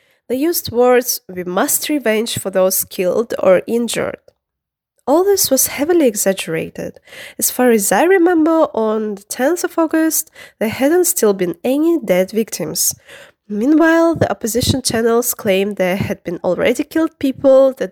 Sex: female